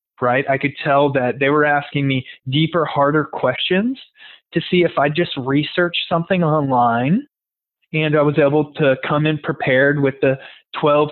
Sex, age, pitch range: male, 20-39, 130-165 Hz